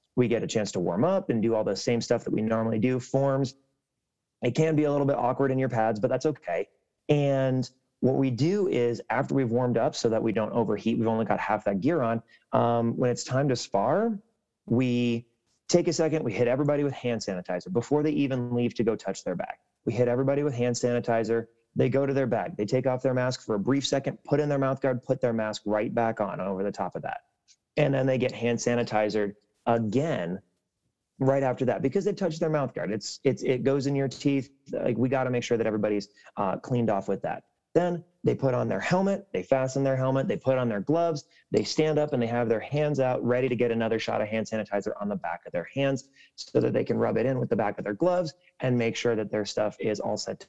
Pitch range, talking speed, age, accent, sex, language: 115-140 Hz, 250 wpm, 30-49, American, male, English